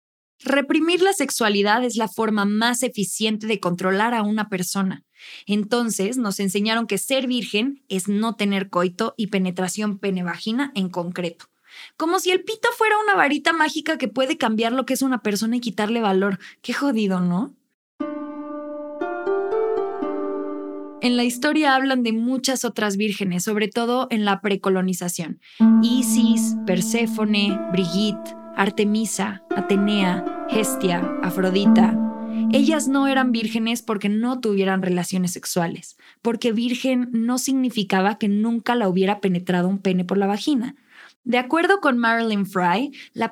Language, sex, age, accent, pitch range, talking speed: Spanish, female, 20-39, Mexican, 195-255 Hz, 135 wpm